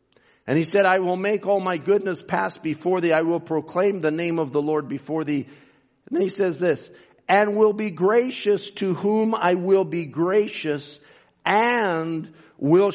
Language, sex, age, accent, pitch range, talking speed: English, male, 50-69, American, 150-185 Hz, 180 wpm